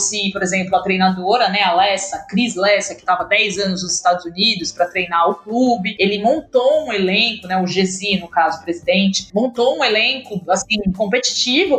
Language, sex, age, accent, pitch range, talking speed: Portuguese, female, 20-39, Brazilian, 195-255 Hz, 190 wpm